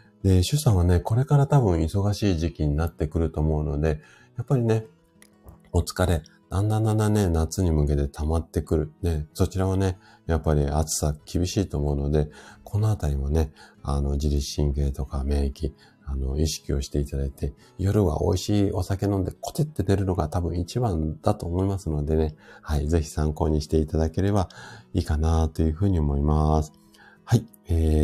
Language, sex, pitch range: Japanese, male, 75-100 Hz